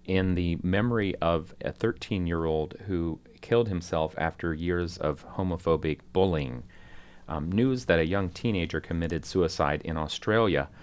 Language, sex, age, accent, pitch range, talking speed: English, male, 40-59, American, 80-95 Hz, 135 wpm